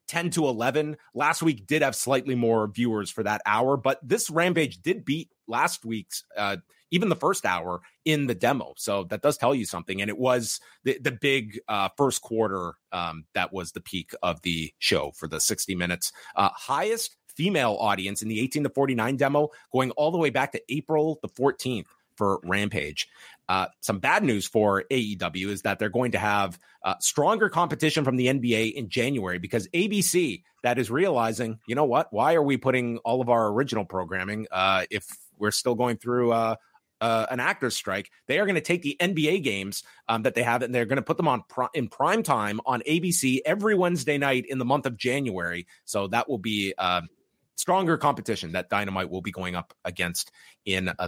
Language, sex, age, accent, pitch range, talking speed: English, male, 30-49, American, 105-140 Hz, 200 wpm